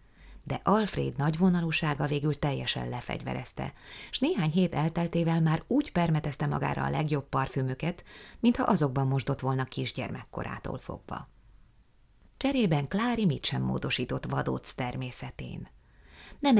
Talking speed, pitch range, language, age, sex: 110 wpm, 130-165 Hz, Hungarian, 30-49, female